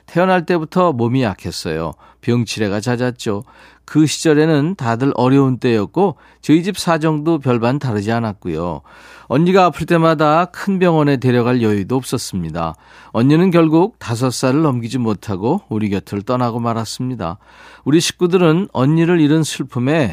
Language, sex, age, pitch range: Korean, male, 40-59, 120-160 Hz